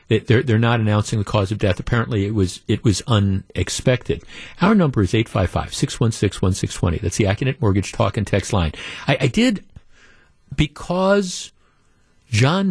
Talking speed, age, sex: 145 wpm, 50-69, male